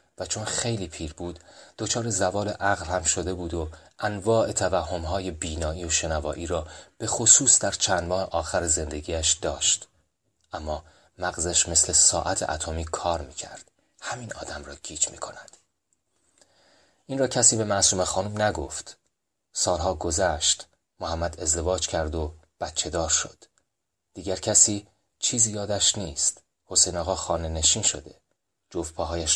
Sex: male